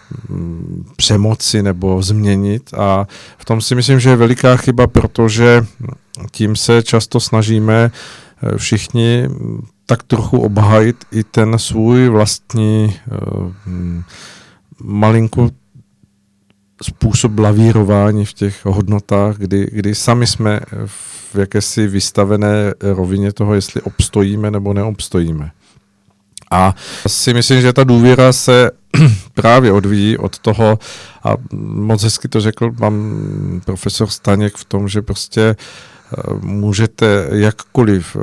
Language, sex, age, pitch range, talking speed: Czech, male, 50-69, 100-115 Hz, 110 wpm